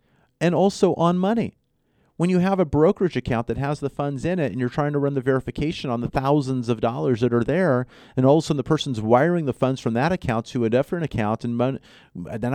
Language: English